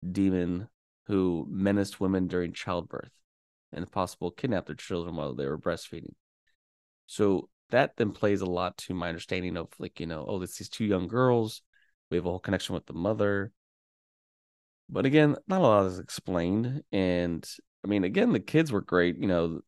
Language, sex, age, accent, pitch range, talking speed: English, male, 20-39, American, 85-105 Hz, 185 wpm